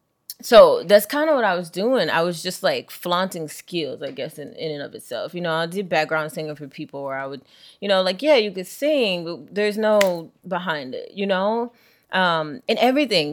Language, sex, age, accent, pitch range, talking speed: English, female, 20-39, American, 180-245 Hz, 220 wpm